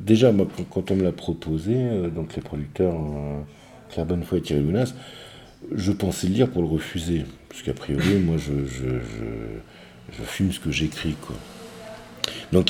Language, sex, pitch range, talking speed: French, male, 80-110 Hz, 180 wpm